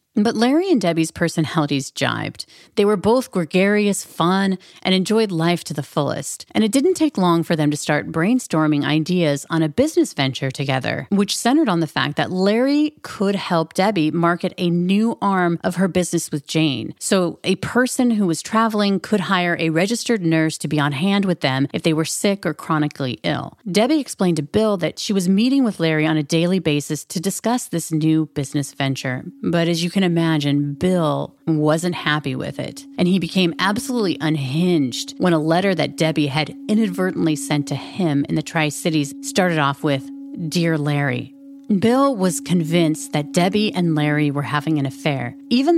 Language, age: English, 30-49